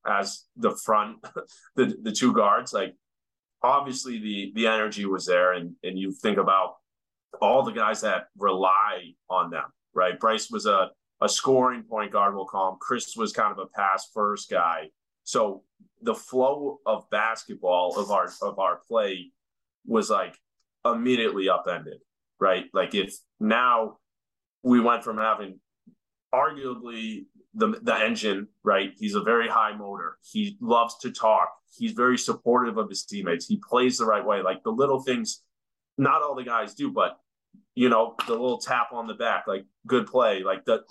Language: English